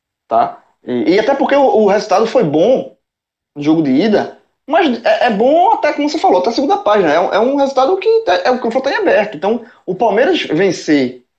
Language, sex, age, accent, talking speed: Portuguese, male, 20-39, Brazilian, 215 wpm